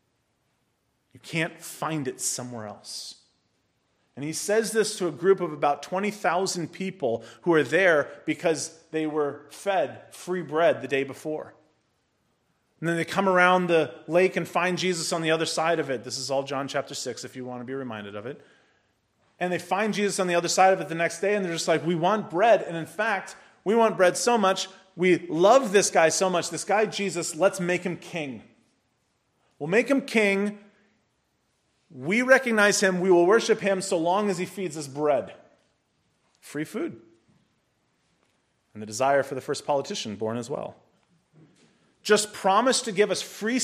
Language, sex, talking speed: English, male, 185 wpm